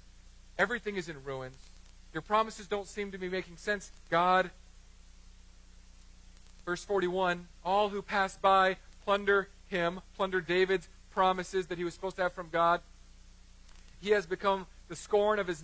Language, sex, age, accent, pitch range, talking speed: English, male, 40-59, American, 120-180 Hz, 150 wpm